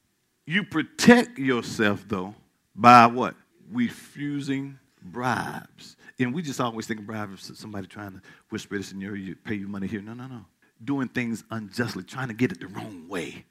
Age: 50-69